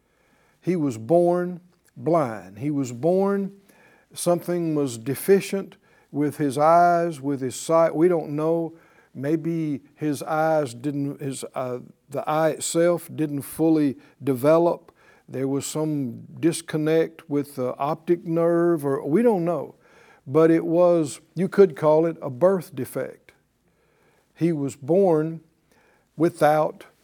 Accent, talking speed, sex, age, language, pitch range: American, 125 wpm, male, 60-79, English, 145-185 Hz